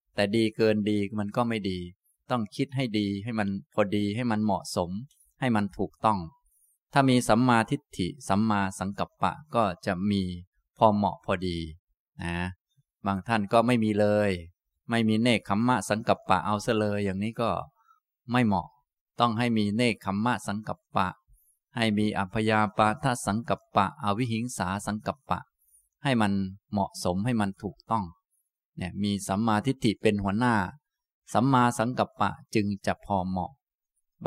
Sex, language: male, Thai